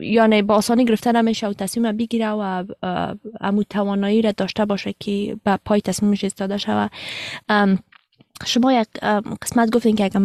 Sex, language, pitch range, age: female, Persian, 200-225 Hz, 20-39